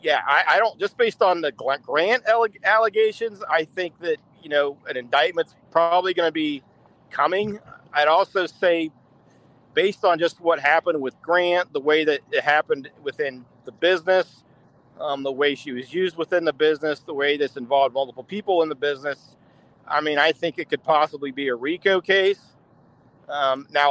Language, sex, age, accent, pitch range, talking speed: English, male, 40-59, American, 140-180 Hz, 180 wpm